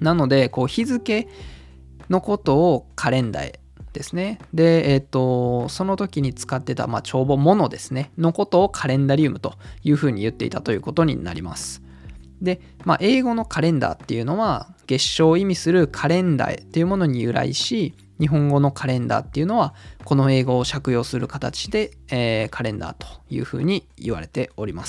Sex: male